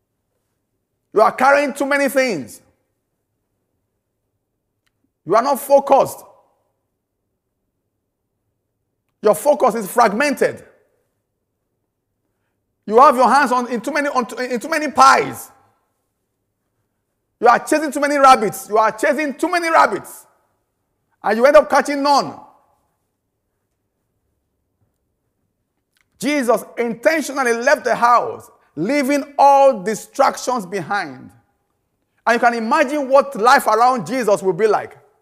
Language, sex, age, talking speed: English, male, 50-69, 110 wpm